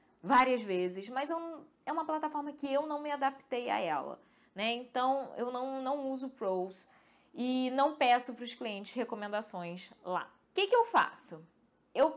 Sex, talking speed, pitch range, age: female, 180 wpm, 215-280 Hz, 10-29